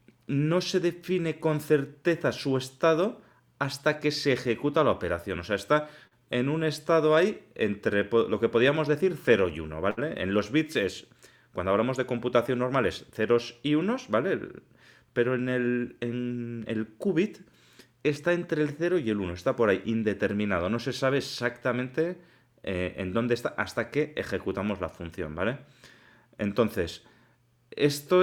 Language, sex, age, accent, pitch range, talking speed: Spanish, male, 30-49, Spanish, 115-155 Hz, 160 wpm